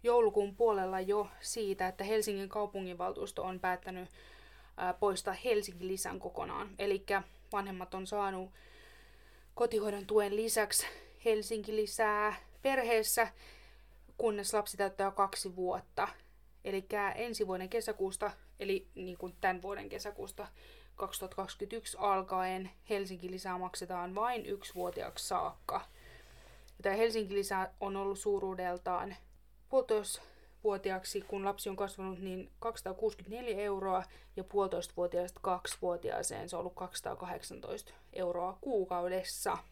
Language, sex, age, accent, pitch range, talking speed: Finnish, female, 20-39, native, 185-210 Hz, 105 wpm